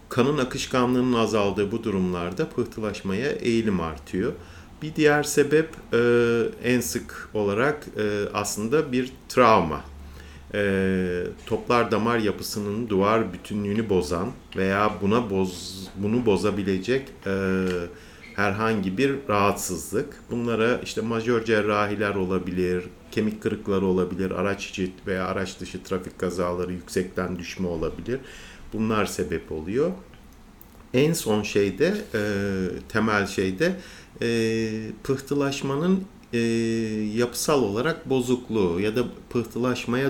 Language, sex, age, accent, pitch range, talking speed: Turkish, male, 50-69, native, 95-120 Hz, 105 wpm